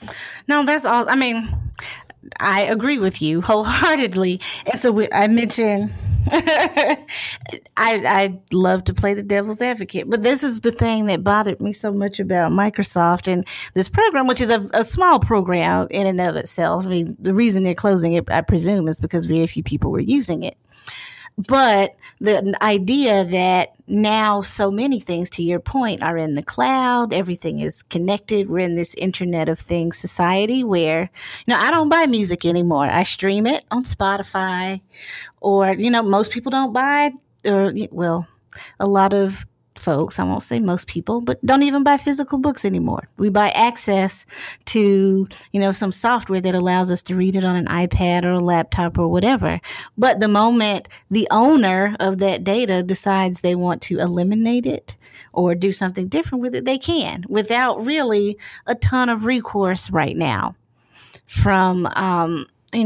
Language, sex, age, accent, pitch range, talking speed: English, female, 30-49, American, 175-225 Hz, 175 wpm